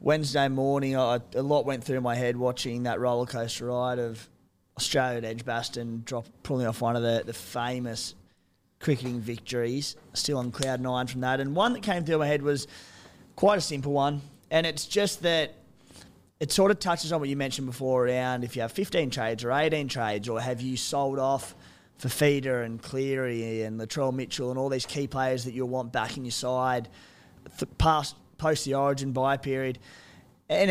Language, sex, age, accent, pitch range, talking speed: English, male, 20-39, Australian, 120-145 Hz, 195 wpm